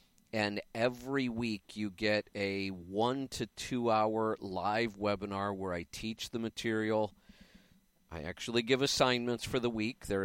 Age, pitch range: 50-69, 100-115 Hz